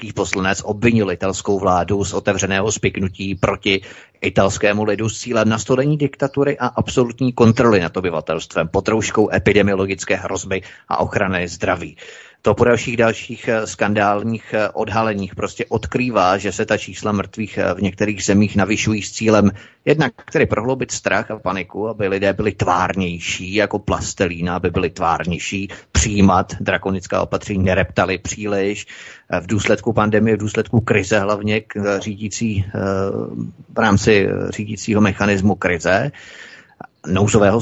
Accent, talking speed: native, 125 wpm